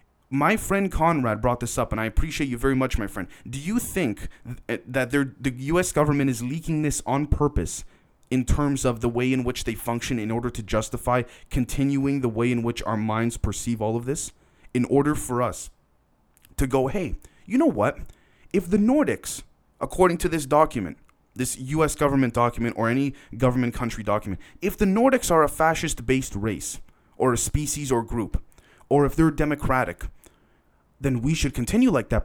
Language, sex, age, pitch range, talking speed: English, male, 30-49, 120-150 Hz, 180 wpm